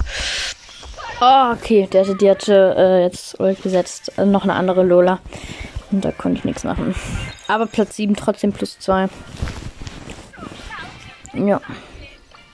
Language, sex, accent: German, female, German